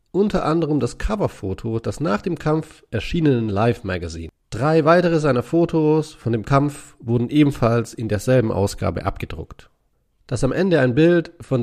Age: 40-59